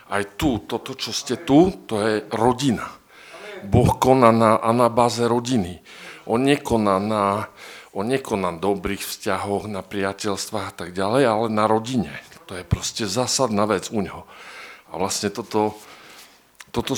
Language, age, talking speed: Slovak, 50-69, 150 wpm